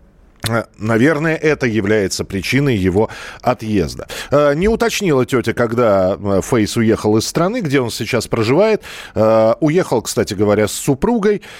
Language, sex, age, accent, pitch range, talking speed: Russian, male, 40-59, native, 105-155 Hz, 120 wpm